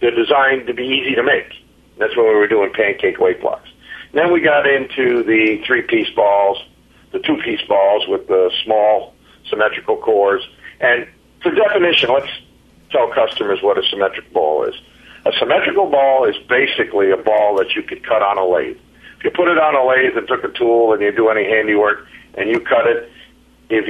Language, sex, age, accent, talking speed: English, male, 50-69, American, 190 wpm